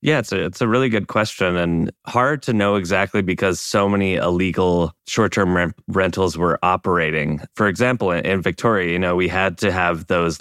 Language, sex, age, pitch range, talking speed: English, male, 20-39, 85-100 Hz, 190 wpm